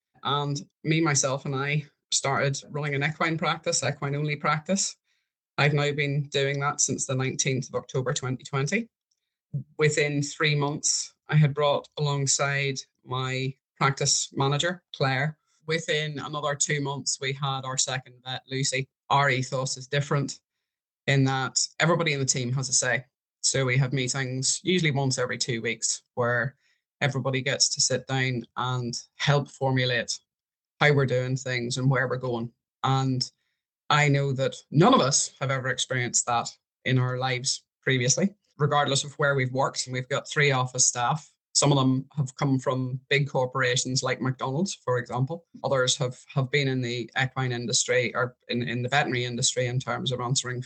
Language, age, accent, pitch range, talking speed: English, 20-39, British, 130-145 Hz, 165 wpm